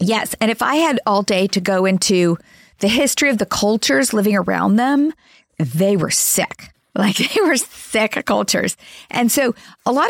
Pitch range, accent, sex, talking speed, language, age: 185-235 Hz, American, female, 180 wpm, English, 40-59